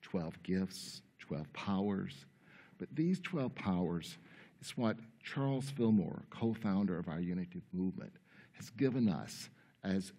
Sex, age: male, 60-79